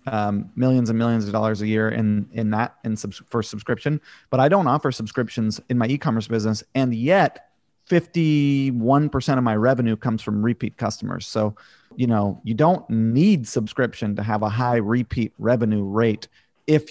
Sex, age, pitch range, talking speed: male, 30-49, 110-135 Hz, 175 wpm